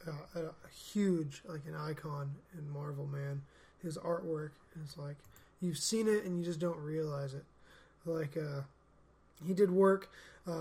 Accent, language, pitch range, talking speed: American, English, 155-185 Hz, 165 wpm